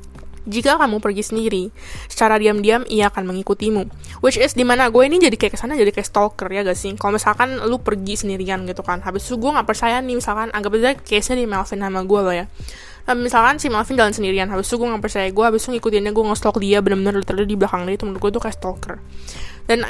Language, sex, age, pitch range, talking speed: Indonesian, female, 10-29, 195-235 Hz, 225 wpm